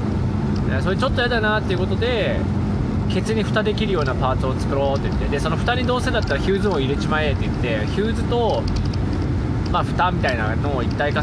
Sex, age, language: male, 20-39, Japanese